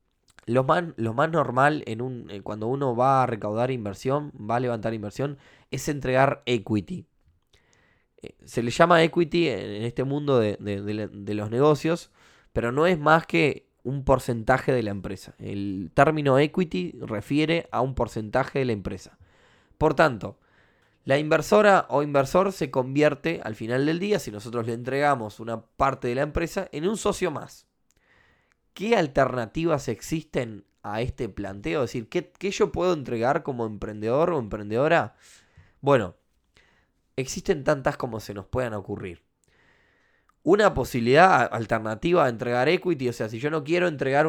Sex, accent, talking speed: male, Argentinian, 155 wpm